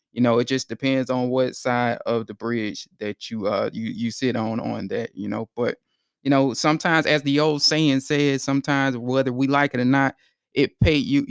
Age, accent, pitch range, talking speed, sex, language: 20-39, American, 120-145 Hz, 220 wpm, male, English